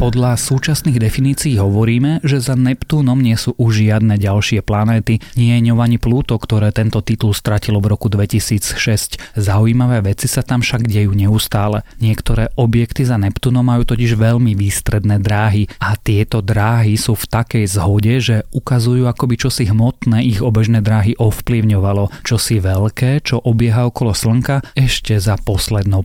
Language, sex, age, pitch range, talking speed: Slovak, male, 30-49, 105-120 Hz, 150 wpm